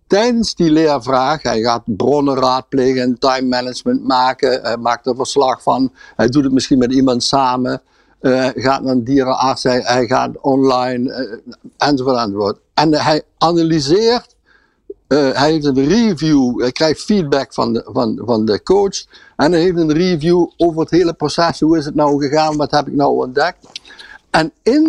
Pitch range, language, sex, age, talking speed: 130-185 Hz, Dutch, male, 60-79, 175 wpm